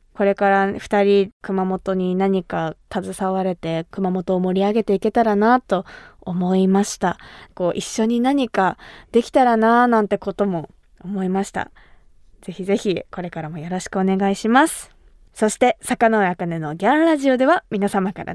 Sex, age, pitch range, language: female, 20-39, 195-270 Hz, Japanese